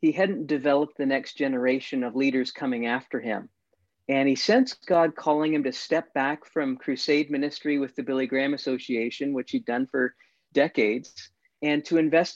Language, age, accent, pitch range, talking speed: English, 50-69, American, 130-170 Hz, 175 wpm